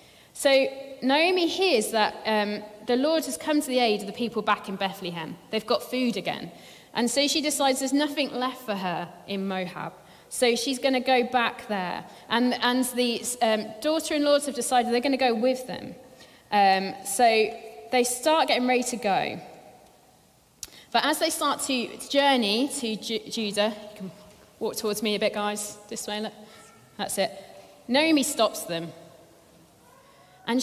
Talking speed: 175 wpm